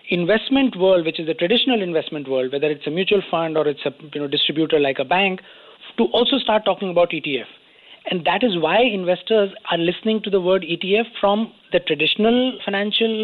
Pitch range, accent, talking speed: 160-215 Hz, Indian, 195 wpm